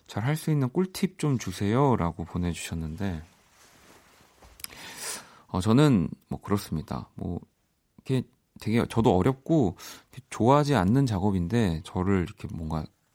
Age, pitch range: 40-59, 95-140 Hz